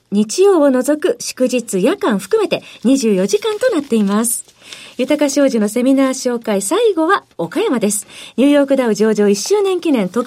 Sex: female